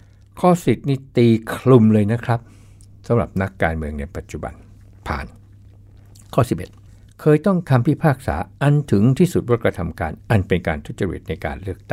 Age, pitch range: 60-79, 90-110 Hz